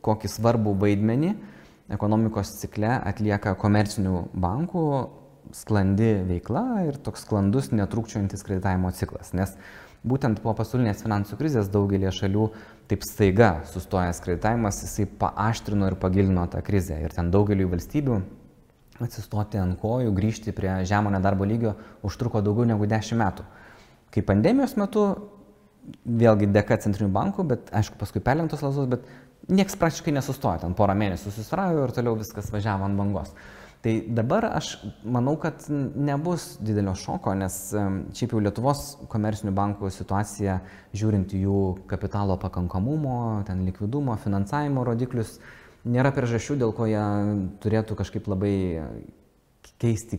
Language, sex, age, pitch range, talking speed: English, male, 20-39, 100-120 Hz, 130 wpm